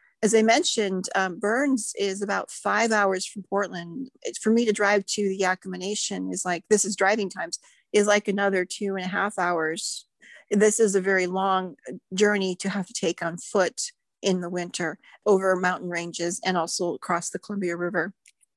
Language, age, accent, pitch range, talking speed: English, 40-59, American, 185-220 Hz, 185 wpm